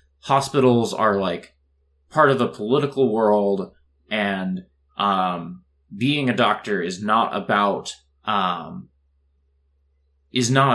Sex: male